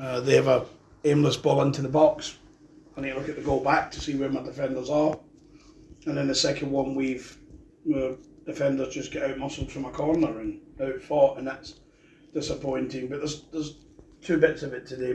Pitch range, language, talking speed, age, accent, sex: 130-150 Hz, English, 200 wpm, 30-49, British, male